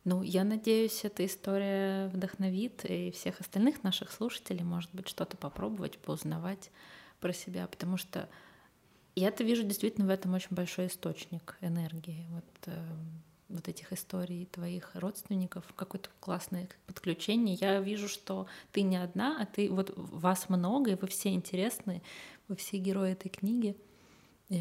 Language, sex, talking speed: Russian, female, 145 wpm